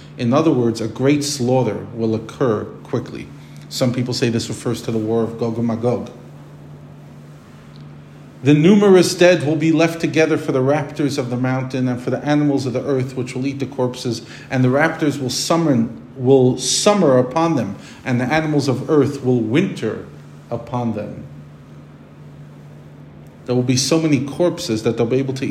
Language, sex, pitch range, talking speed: English, male, 110-140 Hz, 175 wpm